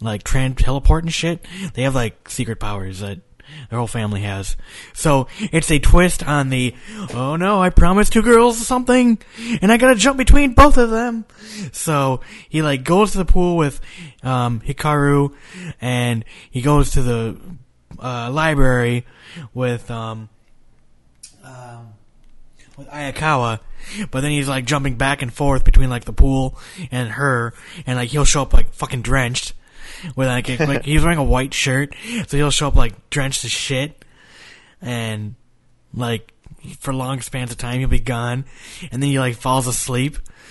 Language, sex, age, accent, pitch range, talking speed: English, male, 20-39, American, 120-155 Hz, 165 wpm